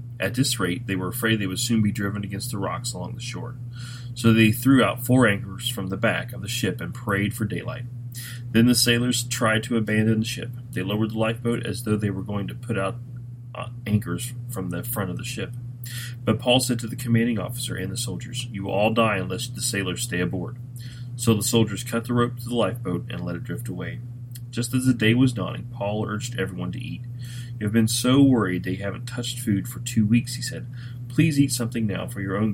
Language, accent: English, American